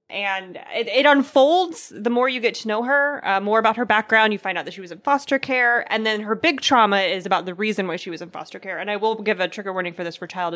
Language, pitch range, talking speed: English, 190-255 Hz, 290 wpm